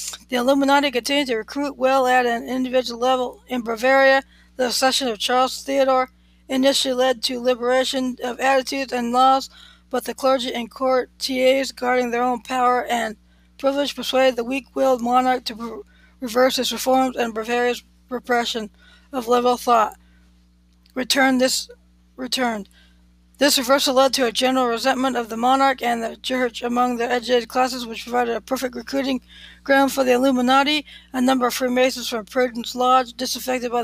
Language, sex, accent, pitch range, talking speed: English, female, American, 235-265 Hz, 160 wpm